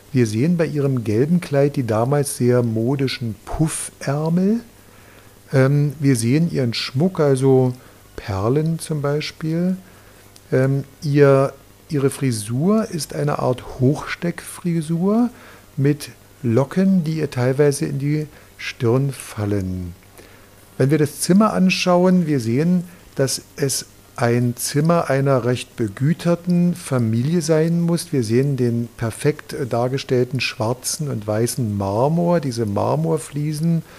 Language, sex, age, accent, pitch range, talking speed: German, male, 50-69, German, 115-155 Hz, 110 wpm